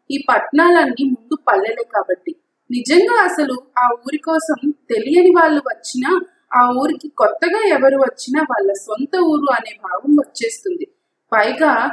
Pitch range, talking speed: 225-330 Hz, 125 wpm